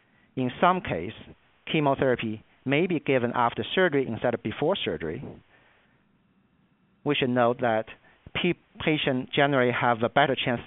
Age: 40-59